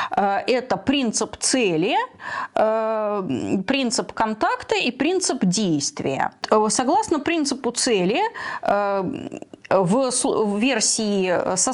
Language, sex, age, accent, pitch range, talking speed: Russian, female, 20-39, native, 205-290 Hz, 70 wpm